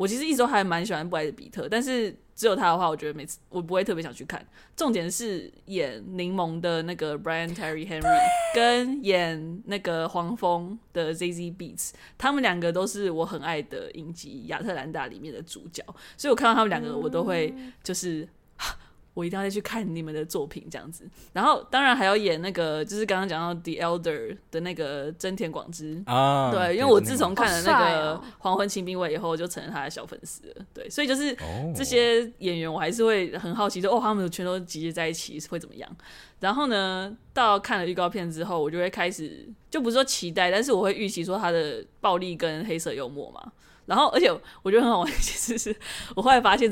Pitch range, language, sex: 165-220 Hz, Chinese, female